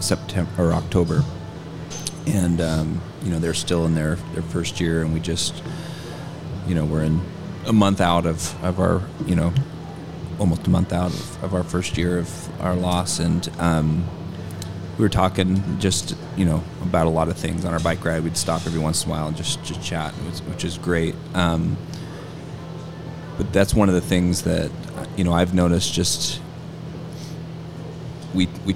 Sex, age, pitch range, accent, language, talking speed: male, 30-49, 85-90 Hz, American, English, 180 wpm